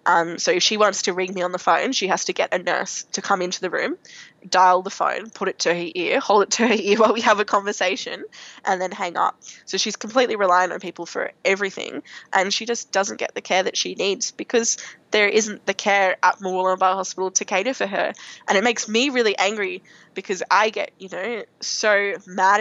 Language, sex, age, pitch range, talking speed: English, female, 10-29, 185-220 Hz, 235 wpm